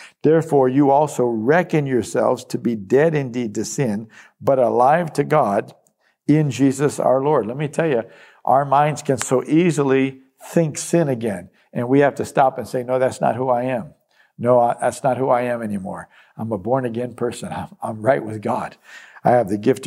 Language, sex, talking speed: English, male, 195 wpm